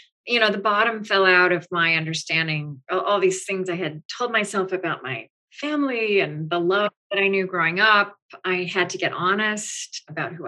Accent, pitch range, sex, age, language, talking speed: American, 180-225 Hz, female, 40-59, English, 200 wpm